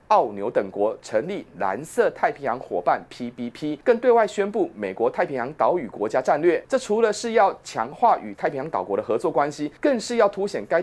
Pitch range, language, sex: 165-250 Hz, Chinese, male